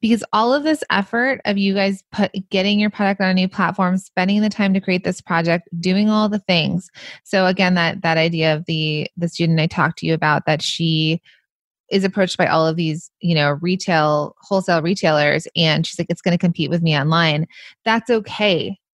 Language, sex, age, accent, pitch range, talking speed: English, female, 20-39, American, 165-205 Hz, 210 wpm